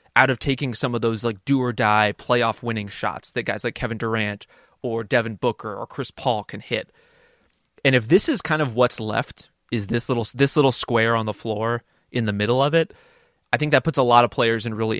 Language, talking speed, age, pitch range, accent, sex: English, 215 wpm, 20-39, 110-135 Hz, American, male